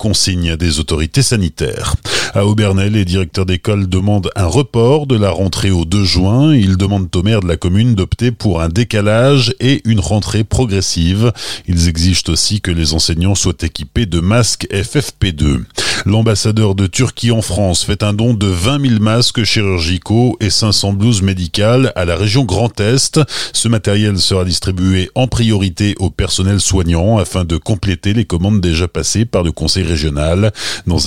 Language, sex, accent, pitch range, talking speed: French, male, French, 90-110 Hz, 170 wpm